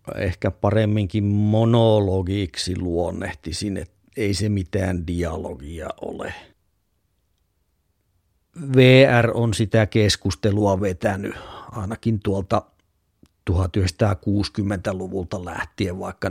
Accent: native